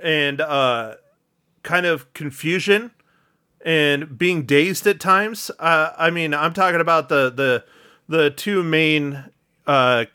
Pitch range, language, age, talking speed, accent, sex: 145-175 Hz, English, 30-49, 130 wpm, American, male